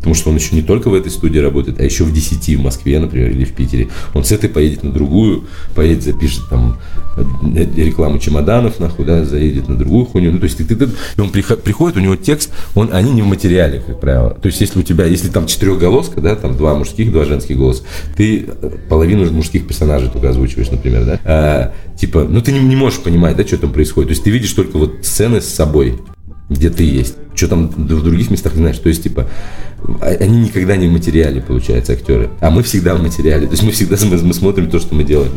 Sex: male